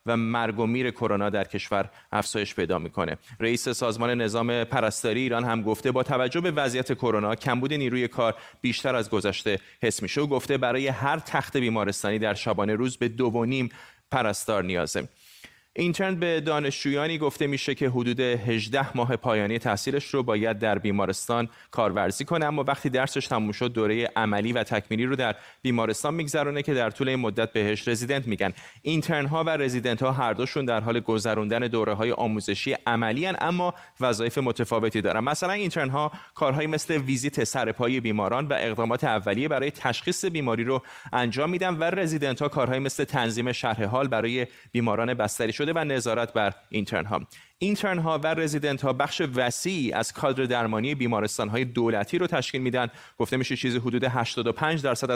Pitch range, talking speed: 115-140 Hz, 170 wpm